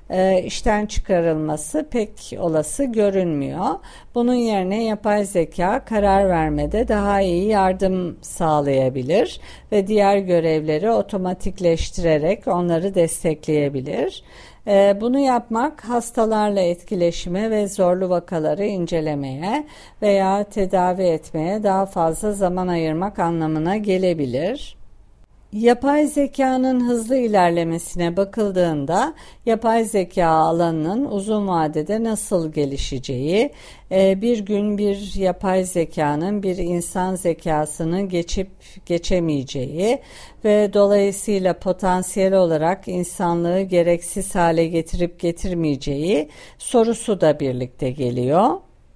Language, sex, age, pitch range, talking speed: Turkish, female, 50-69, 165-210 Hz, 90 wpm